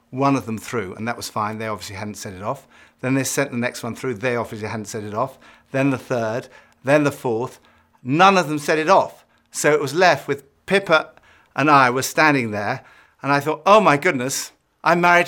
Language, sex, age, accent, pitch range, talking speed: English, male, 50-69, British, 120-155 Hz, 230 wpm